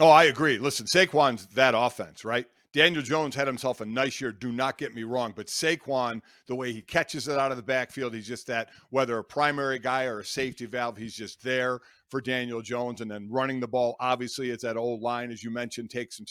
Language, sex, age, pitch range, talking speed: English, male, 50-69, 130-195 Hz, 230 wpm